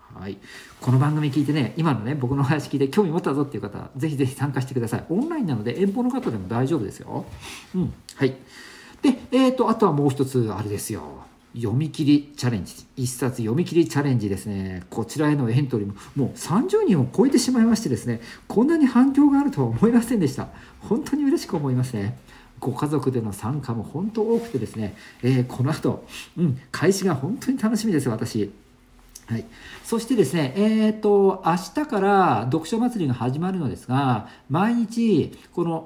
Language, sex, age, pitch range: Japanese, male, 50-69, 125-210 Hz